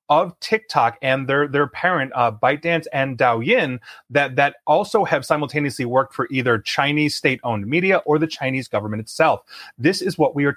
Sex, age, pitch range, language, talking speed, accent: male, 30-49, 130-170 Hz, English, 180 wpm, American